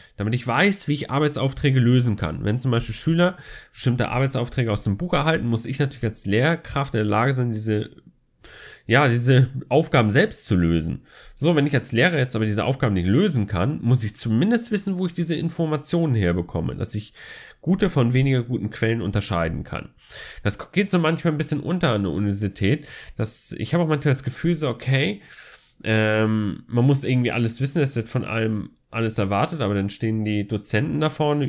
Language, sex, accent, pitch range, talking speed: German, male, German, 110-145 Hz, 195 wpm